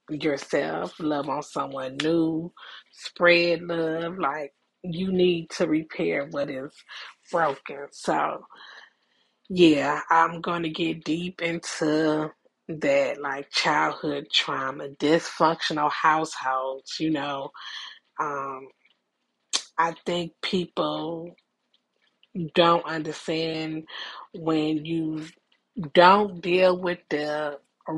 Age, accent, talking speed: 30-49, American, 90 wpm